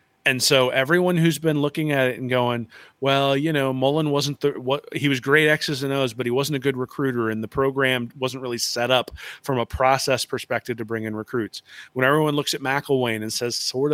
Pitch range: 115-135 Hz